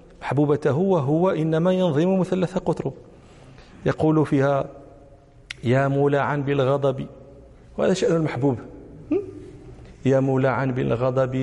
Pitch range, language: 130-155 Hz, Danish